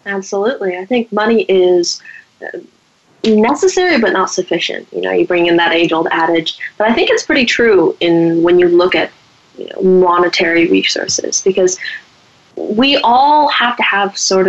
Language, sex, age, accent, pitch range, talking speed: English, female, 20-39, American, 175-235 Hz, 160 wpm